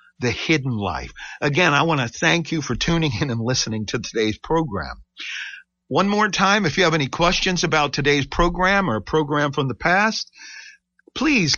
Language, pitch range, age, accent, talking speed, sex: English, 115-175 Hz, 50-69, American, 180 wpm, male